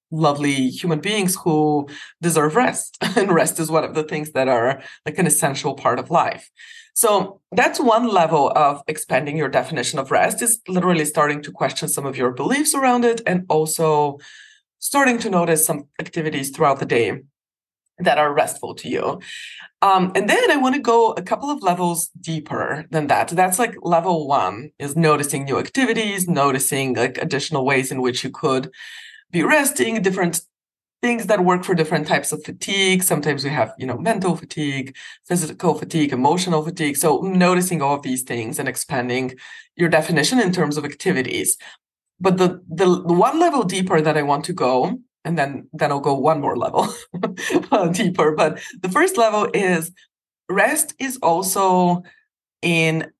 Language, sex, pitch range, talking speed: English, female, 145-190 Hz, 175 wpm